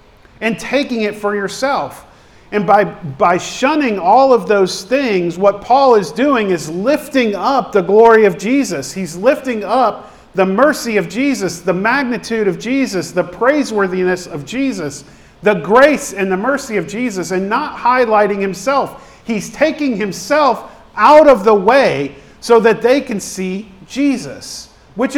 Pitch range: 180-250 Hz